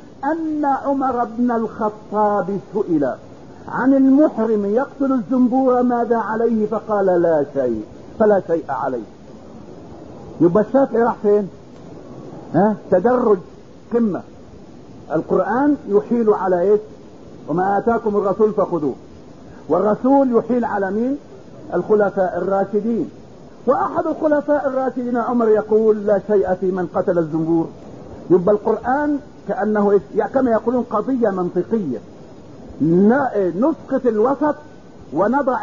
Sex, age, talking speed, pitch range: male, 50-69, 100 wpm, 195-260 Hz